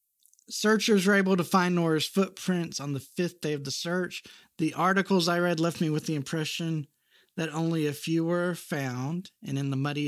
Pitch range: 140-180 Hz